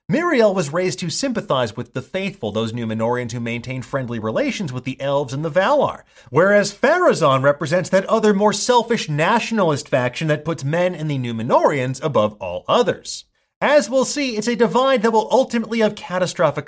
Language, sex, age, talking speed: English, male, 30-49, 175 wpm